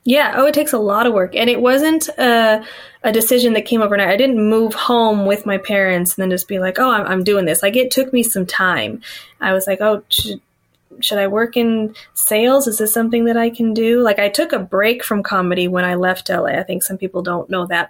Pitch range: 190-230 Hz